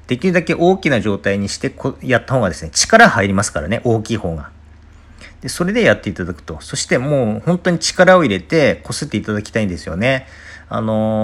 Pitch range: 90-135 Hz